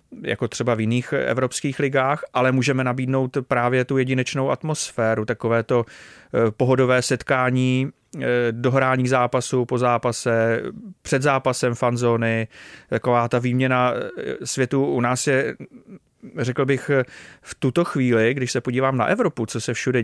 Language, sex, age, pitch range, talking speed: Czech, male, 30-49, 120-135 Hz, 130 wpm